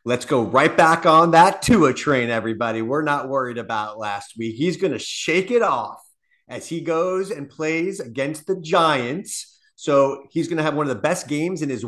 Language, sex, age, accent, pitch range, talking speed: English, male, 40-59, American, 125-175 Hz, 205 wpm